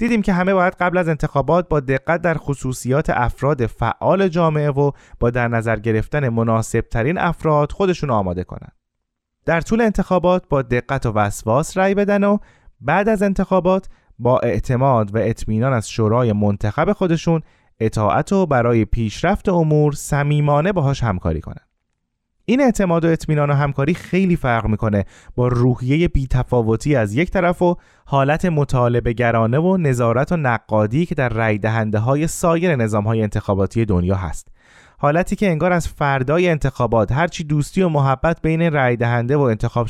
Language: Persian